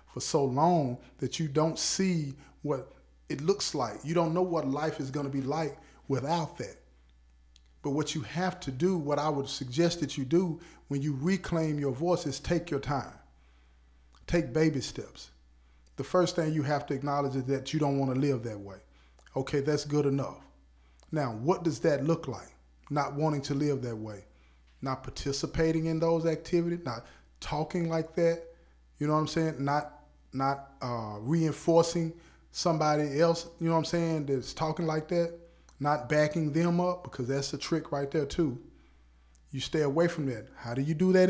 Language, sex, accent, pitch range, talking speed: English, male, American, 130-160 Hz, 185 wpm